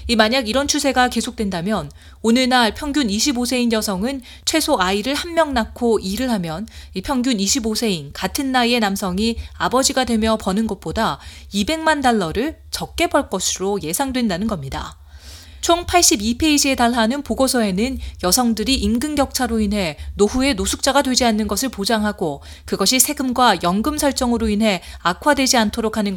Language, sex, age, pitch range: Korean, female, 30-49, 200-260 Hz